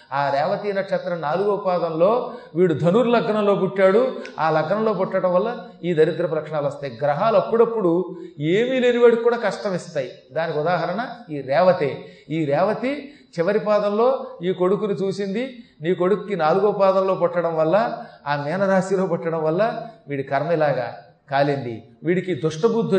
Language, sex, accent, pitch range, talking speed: Telugu, male, native, 165-225 Hz, 135 wpm